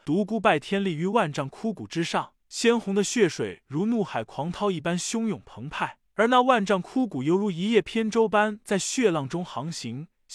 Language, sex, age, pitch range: Chinese, male, 20-39, 160-215 Hz